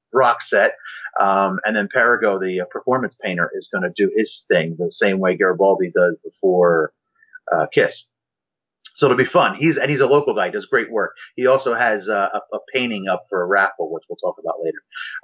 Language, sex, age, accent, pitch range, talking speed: English, male, 30-49, American, 100-150 Hz, 210 wpm